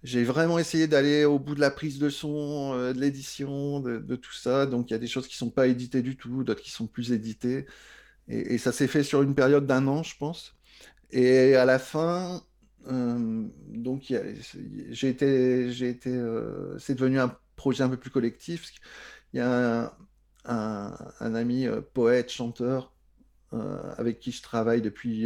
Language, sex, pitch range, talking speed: French, male, 115-135 Hz, 195 wpm